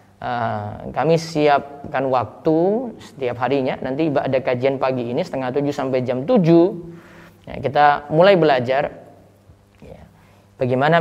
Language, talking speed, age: Indonesian, 105 wpm, 20-39